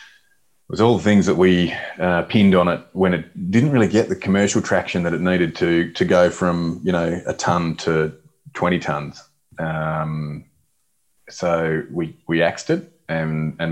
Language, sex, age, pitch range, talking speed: English, male, 30-49, 80-90 Hz, 180 wpm